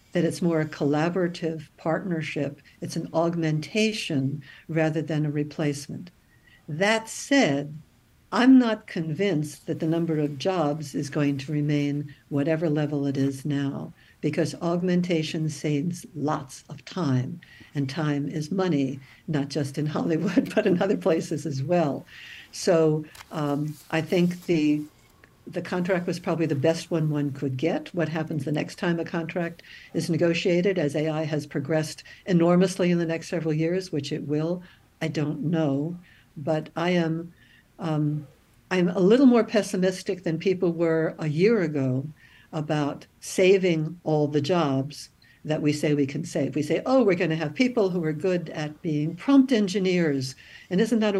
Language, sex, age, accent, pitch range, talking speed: English, female, 60-79, American, 150-185 Hz, 155 wpm